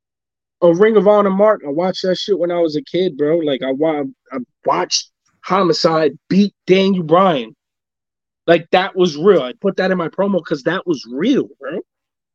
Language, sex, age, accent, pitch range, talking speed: English, male, 20-39, American, 165-210 Hz, 185 wpm